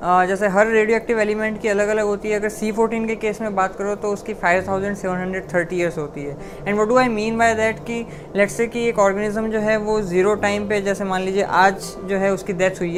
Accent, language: native, Hindi